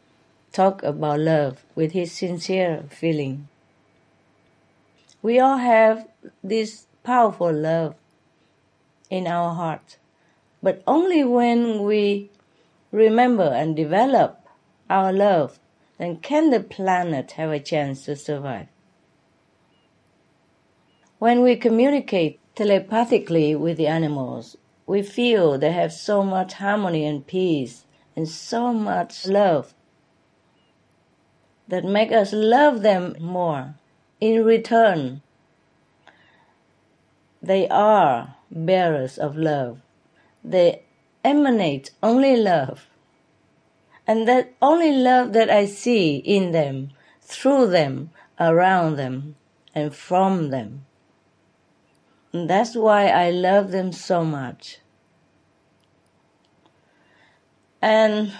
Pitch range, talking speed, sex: 160-220 Hz, 100 wpm, female